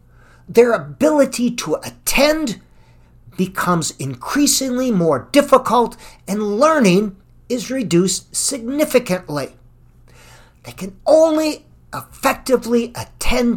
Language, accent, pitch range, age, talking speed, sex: English, American, 175-250 Hz, 50-69, 80 wpm, male